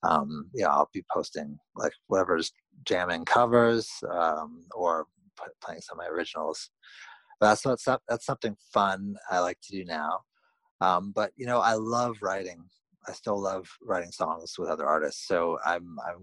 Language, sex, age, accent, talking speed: English, male, 30-49, American, 175 wpm